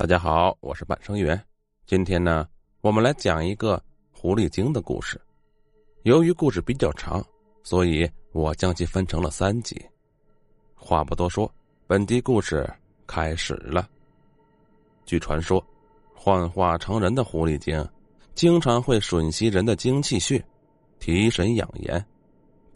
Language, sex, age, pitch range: Chinese, male, 30-49, 85-125 Hz